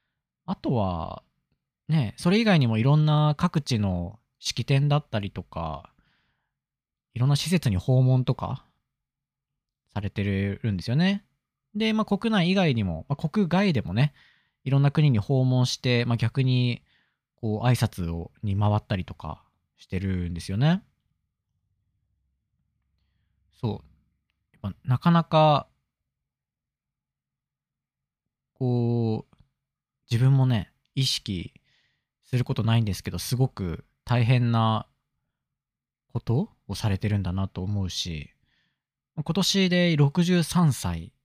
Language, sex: Japanese, male